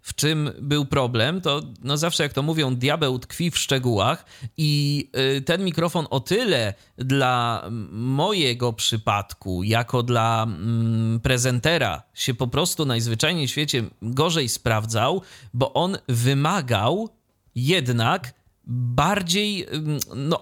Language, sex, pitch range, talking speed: Polish, male, 120-155 Hz, 110 wpm